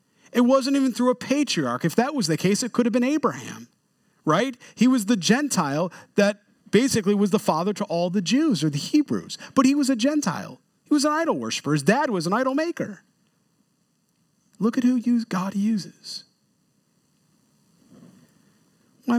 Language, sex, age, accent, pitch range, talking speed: English, male, 40-59, American, 175-240 Hz, 170 wpm